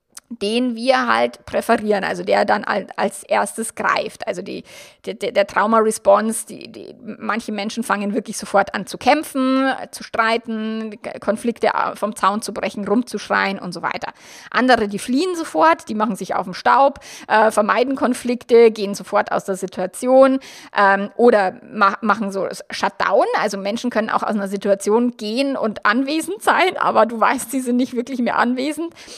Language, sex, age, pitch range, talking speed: German, female, 20-39, 200-250 Hz, 165 wpm